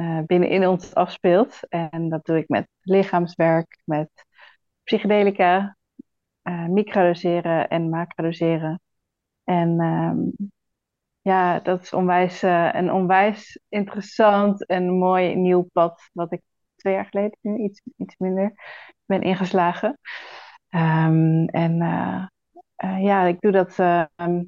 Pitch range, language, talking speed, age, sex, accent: 170-195 Hz, Dutch, 125 wpm, 30-49, female, Dutch